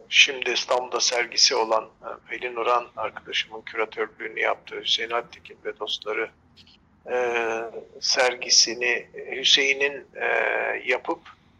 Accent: native